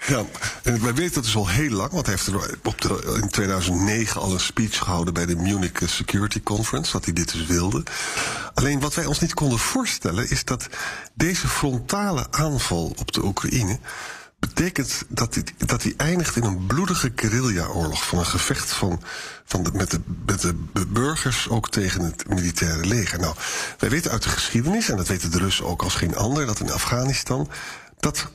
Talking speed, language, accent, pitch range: 195 wpm, Dutch, Dutch, 95-135 Hz